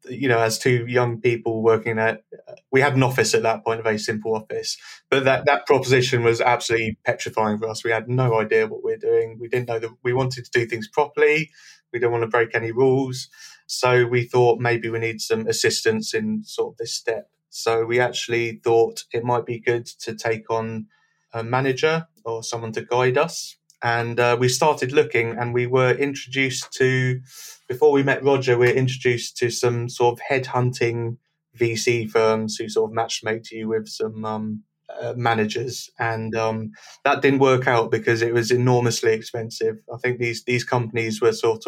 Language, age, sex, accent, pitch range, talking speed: English, 30-49, male, British, 115-135 Hz, 195 wpm